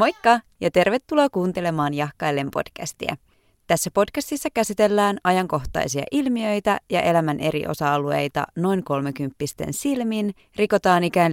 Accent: native